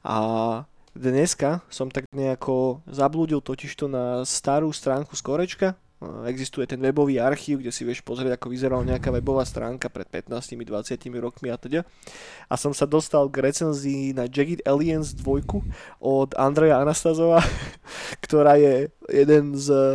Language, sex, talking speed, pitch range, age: Slovak, male, 135 wpm, 135-155 Hz, 20-39